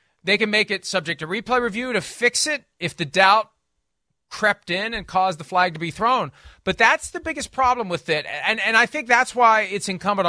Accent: American